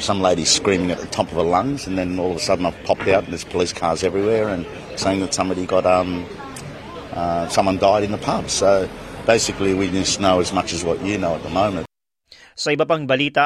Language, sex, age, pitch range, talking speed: Filipino, male, 30-49, 110-160 Hz, 235 wpm